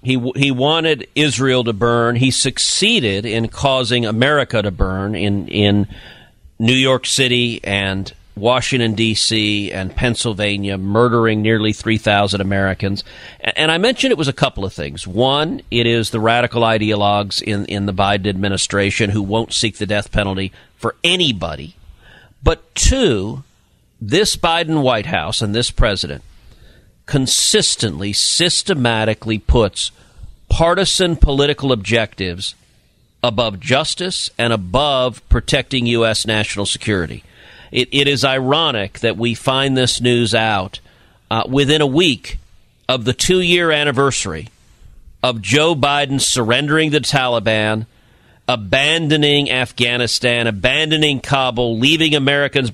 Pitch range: 105-135 Hz